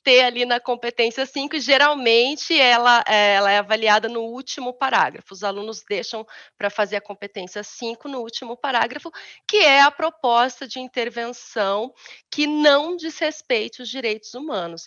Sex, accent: female, Brazilian